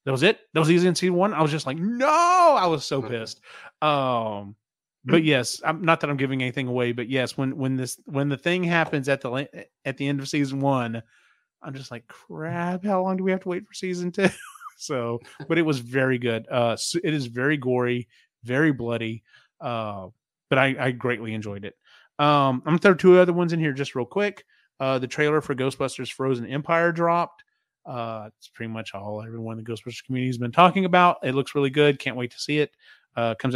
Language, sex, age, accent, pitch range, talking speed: English, male, 30-49, American, 120-165 Hz, 225 wpm